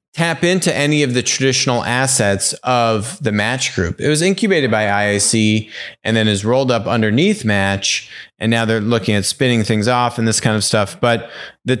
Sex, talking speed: male, 195 wpm